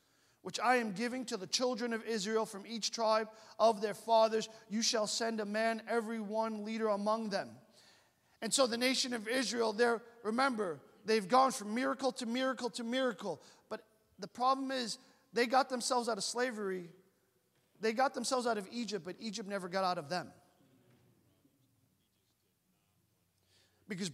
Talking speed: 160 wpm